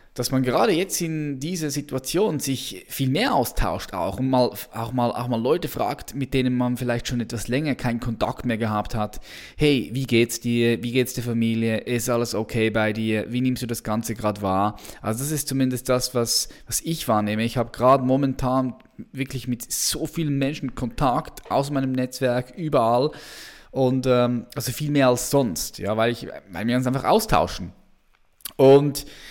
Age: 10-29